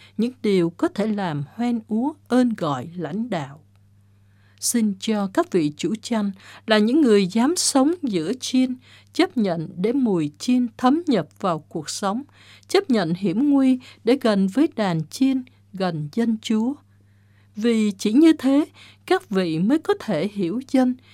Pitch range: 165-260 Hz